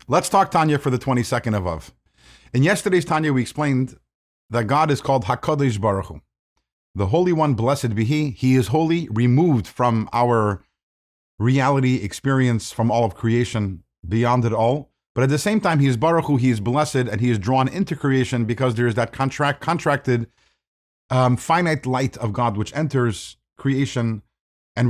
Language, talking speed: English, 180 wpm